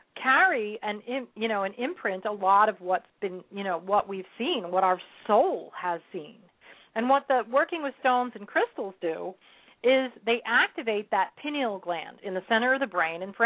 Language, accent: English, American